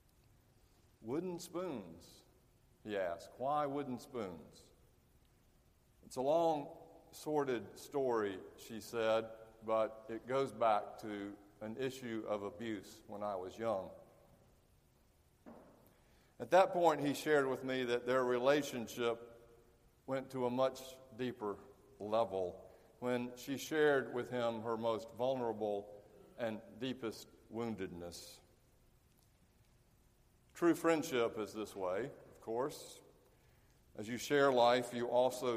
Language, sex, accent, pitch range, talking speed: English, male, American, 110-135 Hz, 115 wpm